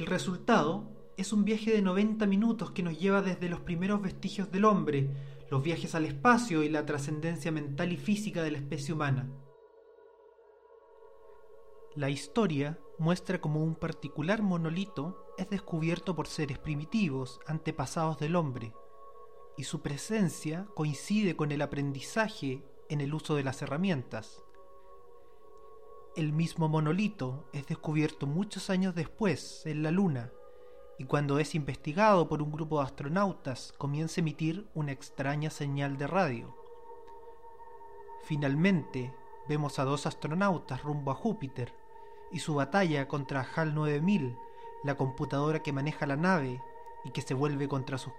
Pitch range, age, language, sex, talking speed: 145-200 Hz, 30-49, Spanish, male, 140 wpm